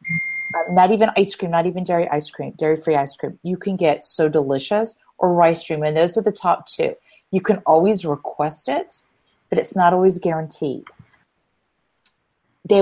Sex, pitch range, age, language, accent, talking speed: female, 155-190 Hz, 40-59, English, American, 180 wpm